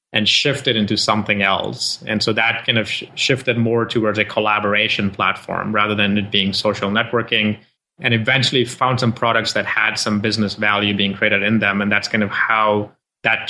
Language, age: English, 20-39